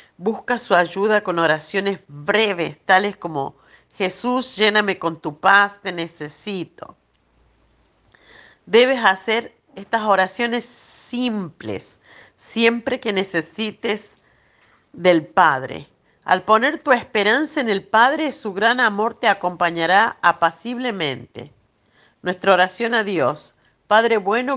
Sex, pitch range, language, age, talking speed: female, 190-235 Hz, Spanish, 50-69, 105 wpm